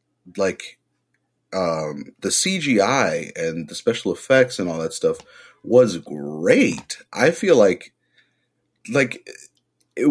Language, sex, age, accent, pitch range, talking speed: English, male, 30-49, American, 85-120 Hz, 115 wpm